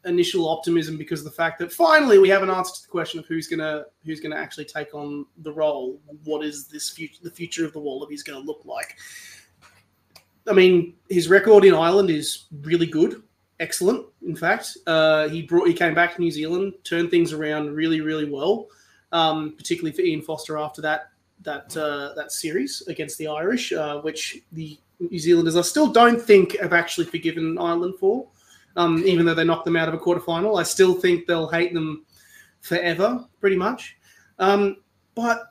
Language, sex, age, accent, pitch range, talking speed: English, male, 30-49, Australian, 155-210 Hz, 200 wpm